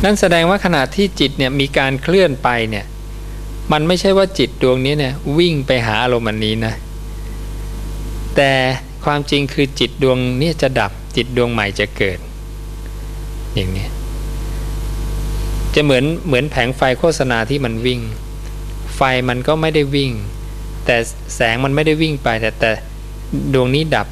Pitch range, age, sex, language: 110-140 Hz, 20-39, male, English